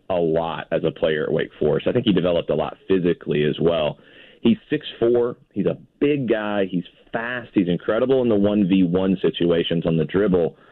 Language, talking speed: English, 190 wpm